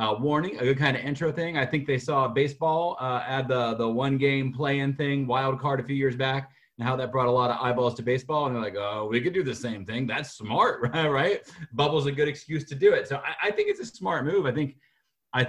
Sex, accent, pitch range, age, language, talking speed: male, American, 120-155 Hz, 30-49, English, 270 wpm